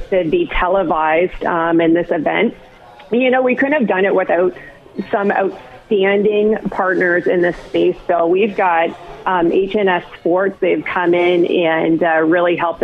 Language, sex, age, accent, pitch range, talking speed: English, female, 40-59, American, 175-220 Hz, 165 wpm